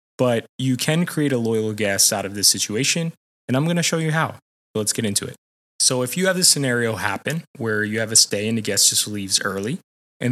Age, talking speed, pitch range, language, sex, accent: 20-39, 240 wpm, 105-140 Hz, English, male, American